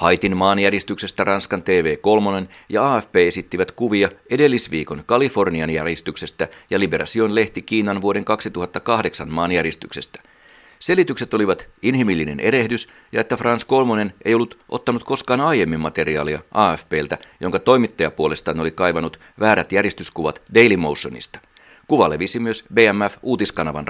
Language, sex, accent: Finnish, male, native